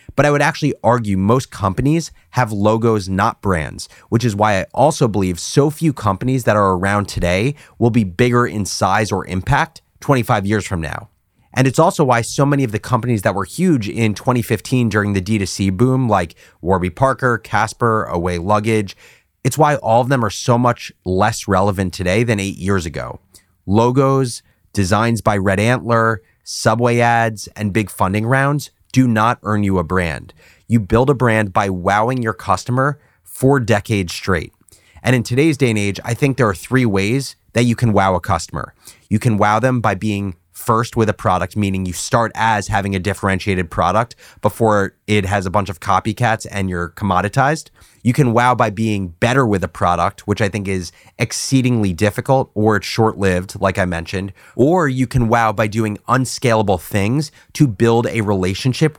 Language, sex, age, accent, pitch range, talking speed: English, male, 30-49, American, 95-125 Hz, 185 wpm